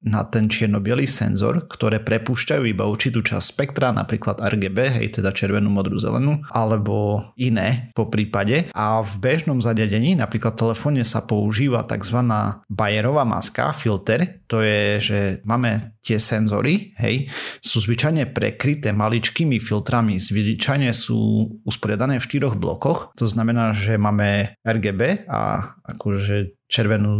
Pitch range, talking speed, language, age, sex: 105-125 Hz, 130 wpm, Slovak, 30-49, male